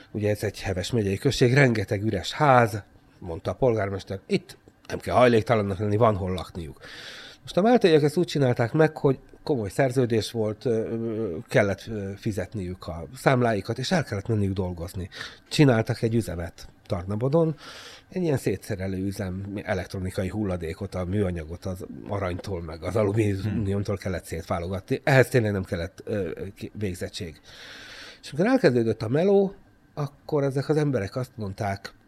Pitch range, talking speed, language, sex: 95-140 Hz, 140 wpm, Hungarian, male